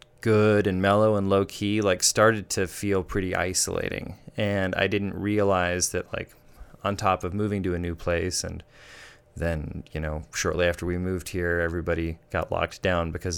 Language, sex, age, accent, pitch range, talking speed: English, male, 20-39, American, 85-100 Hz, 180 wpm